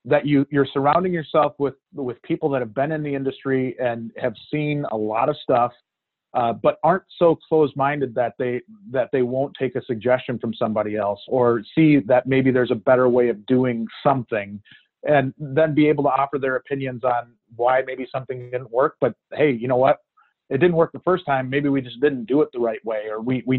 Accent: American